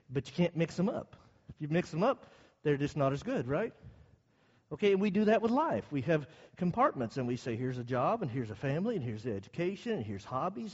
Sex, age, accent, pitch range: male, 50-69, American, 130-180 Hz